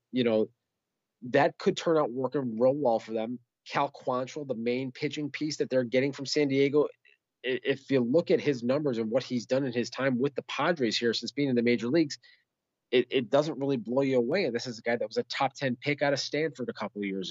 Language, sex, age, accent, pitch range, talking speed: English, male, 30-49, American, 115-140 Hz, 245 wpm